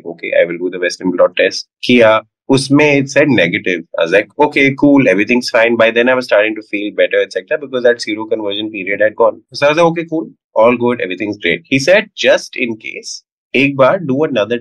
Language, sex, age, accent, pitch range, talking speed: Hindi, male, 20-39, native, 105-150 Hz, 215 wpm